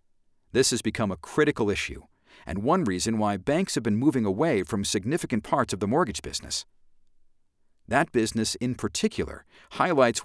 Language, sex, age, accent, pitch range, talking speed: English, male, 50-69, American, 85-130 Hz, 160 wpm